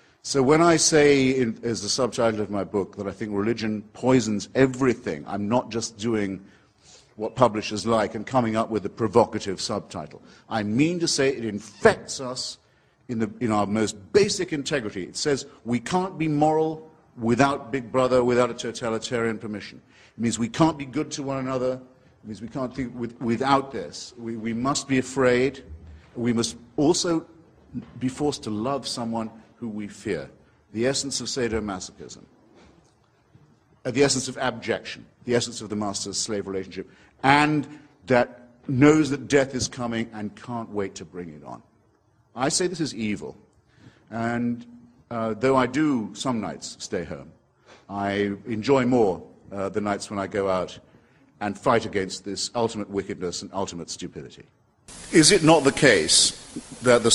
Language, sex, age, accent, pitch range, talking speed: English, male, 50-69, British, 105-135 Hz, 170 wpm